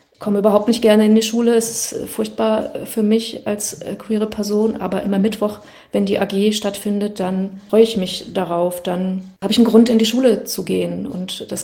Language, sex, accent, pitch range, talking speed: German, female, German, 190-215 Hz, 205 wpm